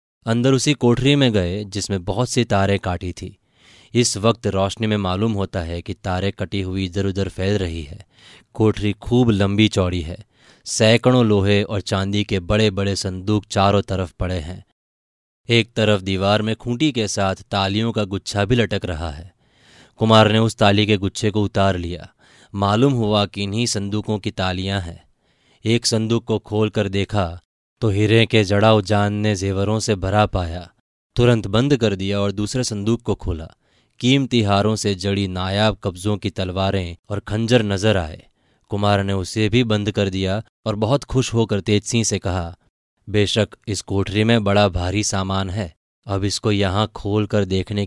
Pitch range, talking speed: 95-110 Hz, 175 wpm